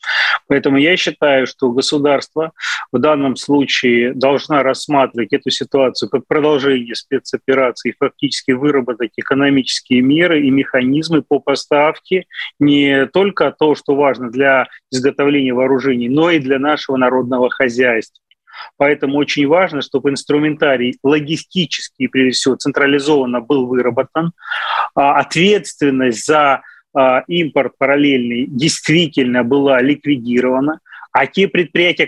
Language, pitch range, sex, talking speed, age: Russian, 135-160 Hz, male, 110 wpm, 30-49